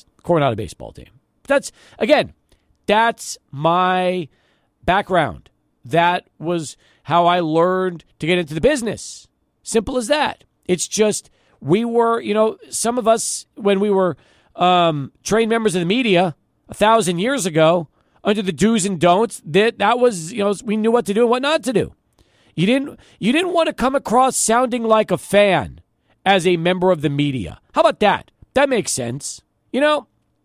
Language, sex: English, male